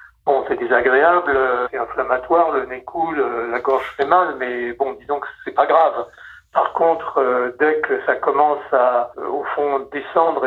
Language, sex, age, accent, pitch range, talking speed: French, male, 60-79, French, 130-175 Hz, 165 wpm